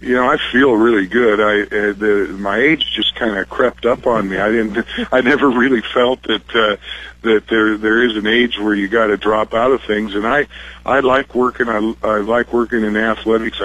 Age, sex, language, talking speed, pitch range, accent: 50-69, male, English, 225 wpm, 105-120 Hz, American